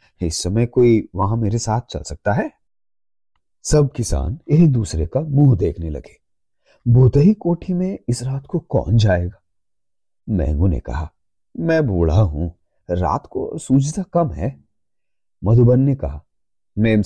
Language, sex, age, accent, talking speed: Hindi, male, 30-49, native, 140 wpm